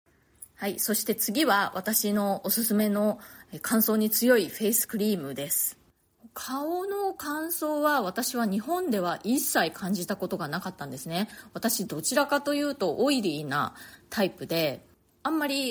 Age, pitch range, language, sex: 20-39, 175-240 Hz, Japanese, female